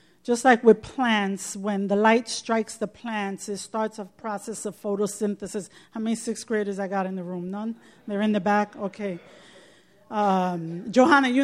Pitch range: 200-230 Hz